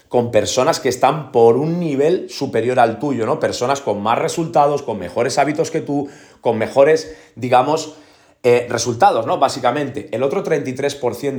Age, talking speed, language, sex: 30-49, 160 wpm, Spanish, male